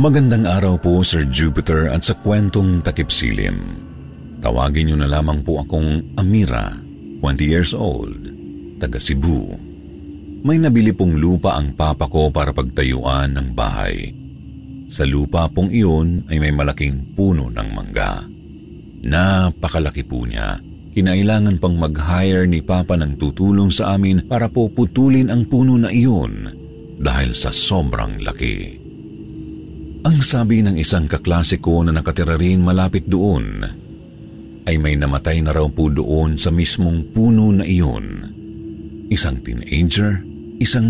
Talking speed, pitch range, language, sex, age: 130 wpm, 75-100 Hz, Filipino, male, 50-69